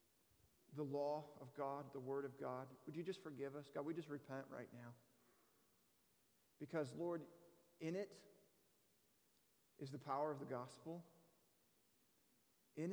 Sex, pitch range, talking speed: male, 140-165 Hz, 140 wpm